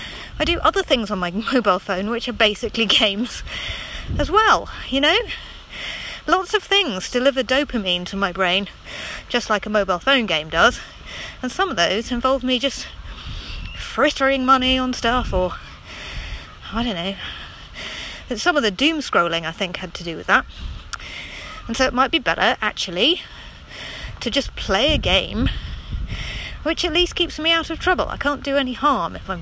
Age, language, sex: 30-49, English, female